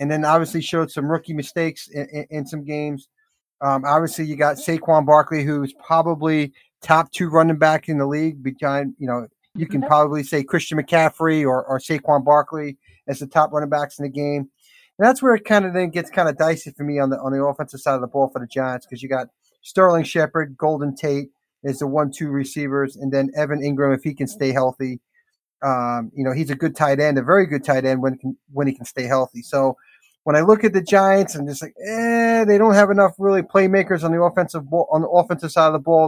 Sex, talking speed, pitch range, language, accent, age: male, 235 wpm, 140-160 Hz, English, American, 30-49